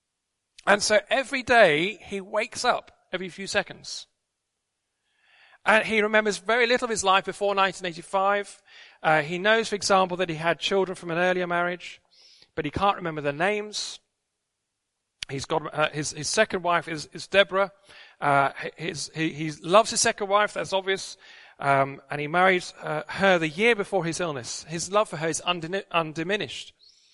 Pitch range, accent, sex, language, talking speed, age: 165-215 Hz, British, male, English, 170 wpm, 40-59